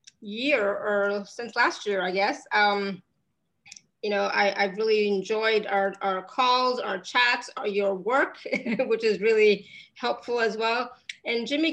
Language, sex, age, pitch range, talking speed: English, female, 30-49, 200-225 Hz, 155 wpm